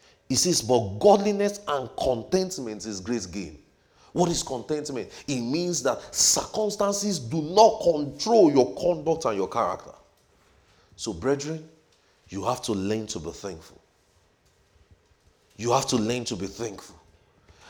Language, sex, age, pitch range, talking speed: English, male, 40-59, 95-155 Hz, 135 wpm